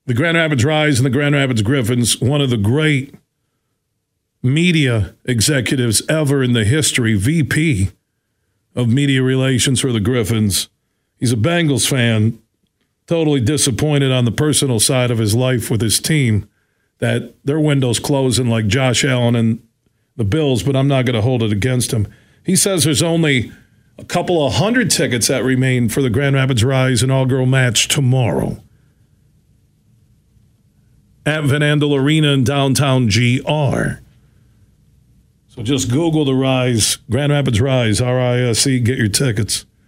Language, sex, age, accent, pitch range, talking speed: English, male, 50-69, American, 115-145 Hz, 150 wpm